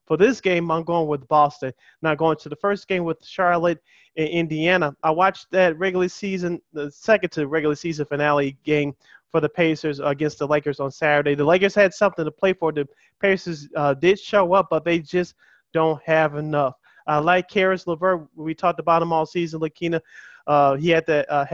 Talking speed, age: 205 wpm, 20-39